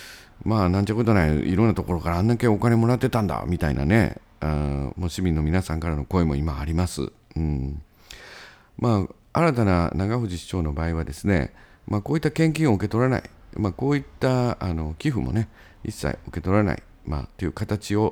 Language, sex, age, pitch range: Japanese, male, 50-69, 85-120 Hz